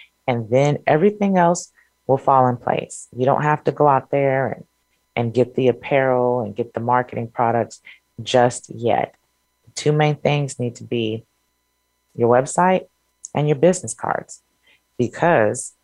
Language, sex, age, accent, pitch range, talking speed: English, female, 30-49, American, 115-140 Hz, 150 wpm